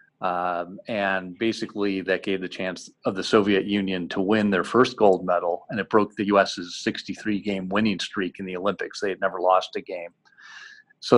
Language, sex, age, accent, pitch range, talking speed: English, male, 40-59, American, 95-110 Hz, 190 wpm